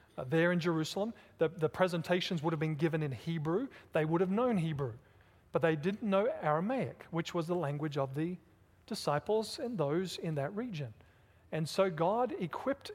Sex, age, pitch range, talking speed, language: male, 40-59, 140-175 Hz, 180 wpm, English